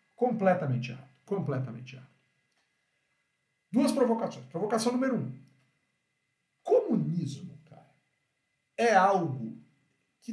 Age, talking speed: 50-69, 80 wpm